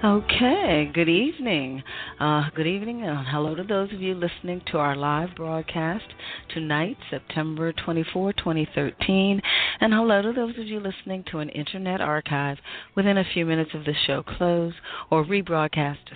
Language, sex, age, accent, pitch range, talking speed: English, female, 40-59, American, 145-185 Hz, 155 wpm